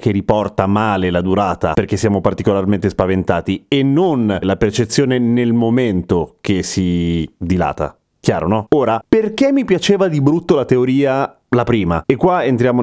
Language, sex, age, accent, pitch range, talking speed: Italian, male, 30-49, native, 100-135 Hz, 155 wpm